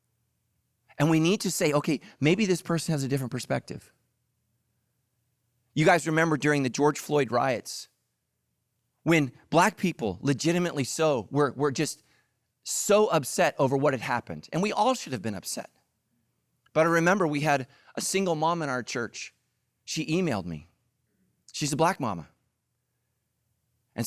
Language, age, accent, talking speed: English, 30-49, American, 150 wpm